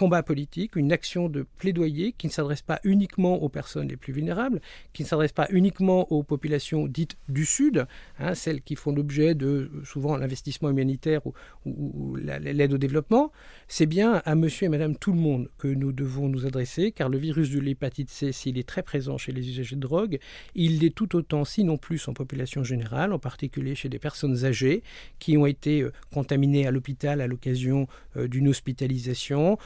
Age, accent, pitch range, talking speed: 50-69, French, 135-160 Hz, 200 wpm